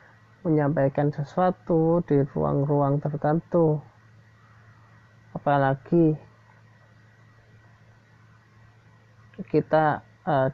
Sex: male